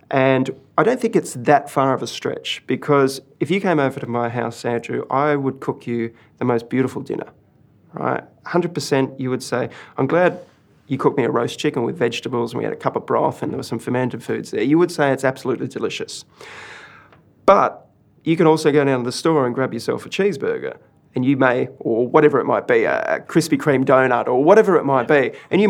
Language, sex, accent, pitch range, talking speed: English, male, Australian, 125-150 Hz, 225 wpm